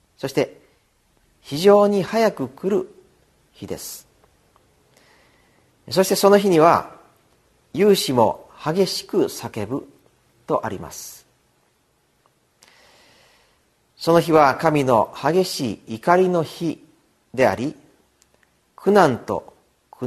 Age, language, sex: 40-59, Japanese, male